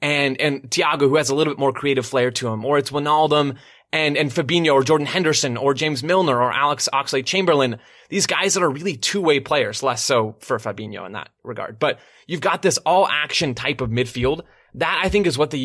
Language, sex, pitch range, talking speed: English, male, 130-155 Hz, 215 wpm